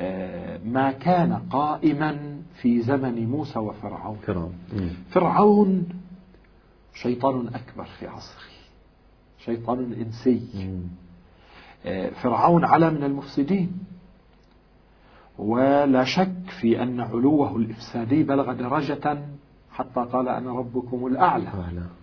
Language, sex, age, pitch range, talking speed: Arabic, male, 50-69, 110-140 Hz, 85 wpm